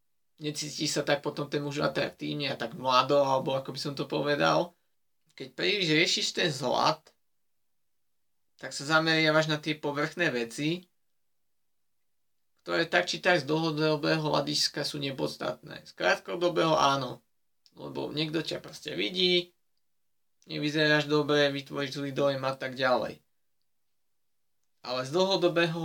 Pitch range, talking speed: 140-160 Hz, 130 wpm